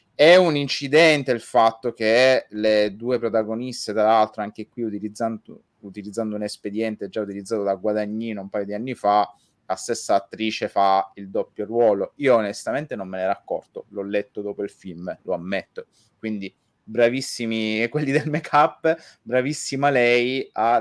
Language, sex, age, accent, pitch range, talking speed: Italian, male, 30-49, native, 105-120 Hz, 160 wpm